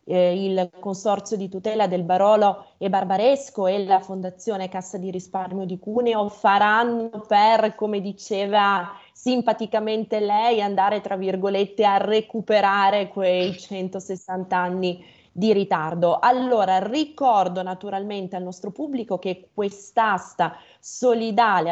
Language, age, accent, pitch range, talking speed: Italian, 20-39, native, 185-225 Hz, 115 wpm